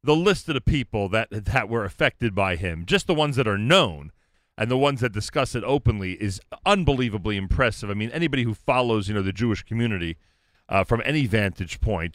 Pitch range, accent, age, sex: 105-145 Hz, American, 40-59, male